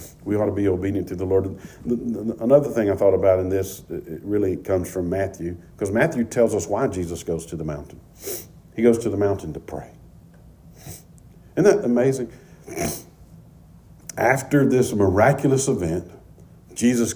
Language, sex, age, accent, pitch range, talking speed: English, male, 50-69, American, 95-140 Hz, 155 wpm